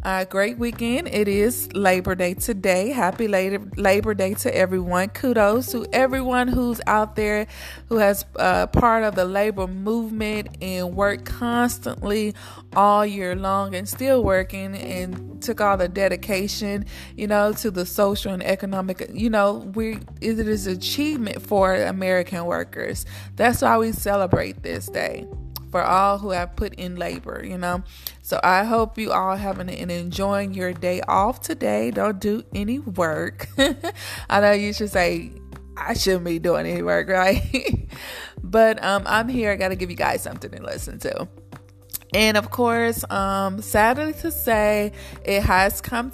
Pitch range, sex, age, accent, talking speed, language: 180-220 Hz, female, 20-39, American, 165 wpm, English